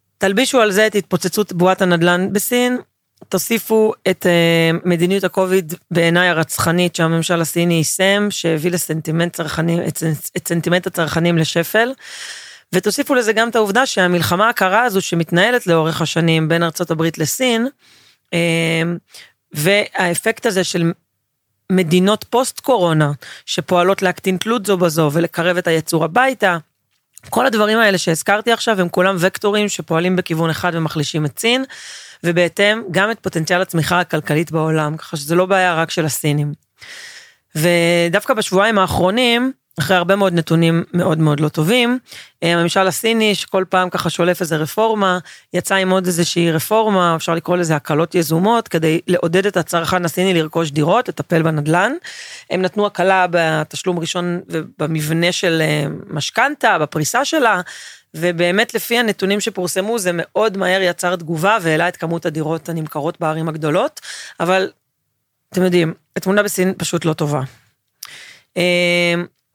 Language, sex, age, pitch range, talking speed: Hebrew, female, 30-49, 165-195 Hz, 130 wpm